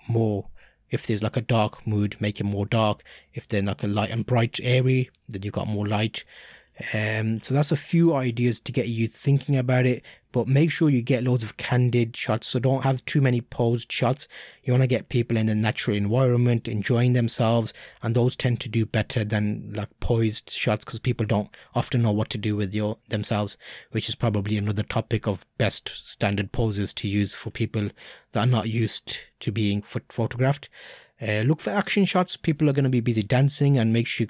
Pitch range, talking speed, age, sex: 110-130 Hz, 210 wpm, 20-39, male